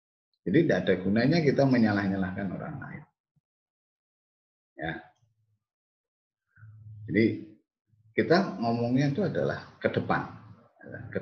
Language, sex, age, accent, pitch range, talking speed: Indonesian, male, 30-49, native, 90-115 Hz, 90 wpm